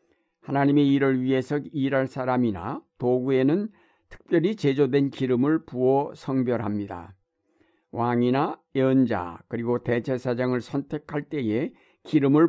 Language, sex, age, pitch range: Korean, male, 60-79, 120-150 Hz